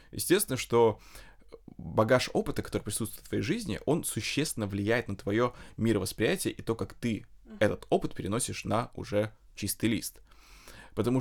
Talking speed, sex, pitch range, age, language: 145 wpm, male, 105-120 Hz, 20-39, Russian